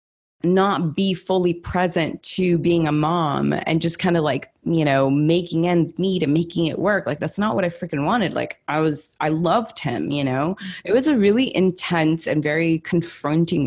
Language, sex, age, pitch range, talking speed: English, female, 20-39, 155-190 Hz, 200 wpm